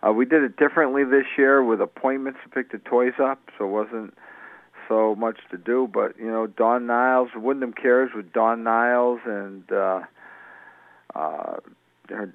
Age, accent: 50-69, American